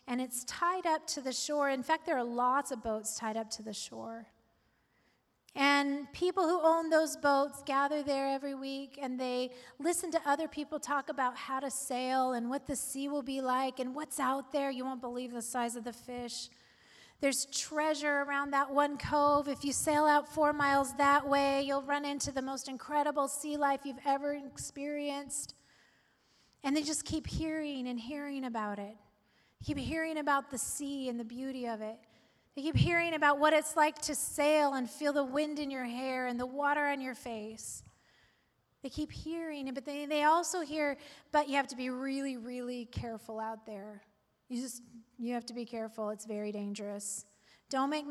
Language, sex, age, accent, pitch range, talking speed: English, female, 30-49, American, 250-290 Hz, 195 wpm